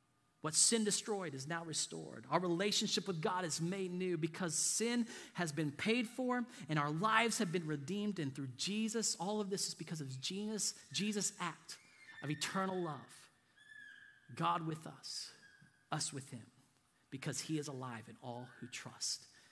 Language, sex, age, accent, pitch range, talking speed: English, male, 40-59, American, 135-185 Hz, 165 wpm